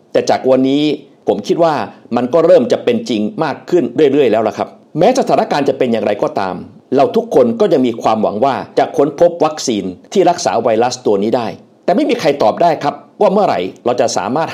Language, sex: Thai, male